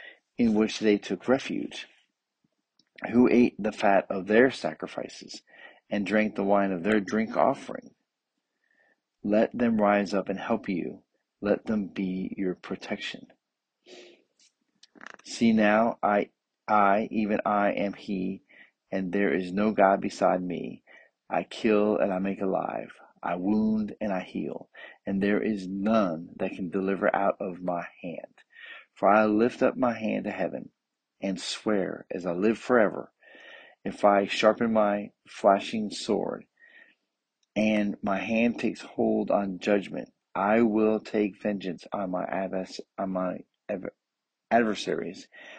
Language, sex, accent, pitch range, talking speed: English, male, American, 95-110 Hz, 135 wpm